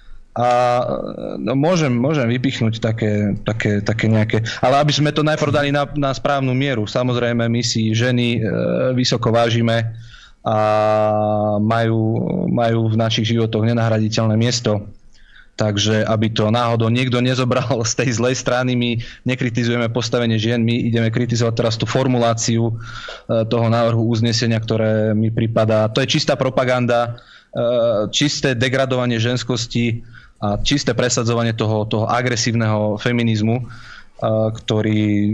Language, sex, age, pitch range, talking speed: Slovak, male, 20-39, 110-135 Hz, 130 wpm